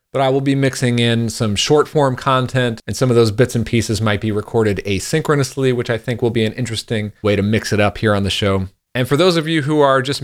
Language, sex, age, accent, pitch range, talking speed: English, male, 30-49, American, 95-125 Hz, 265 wpm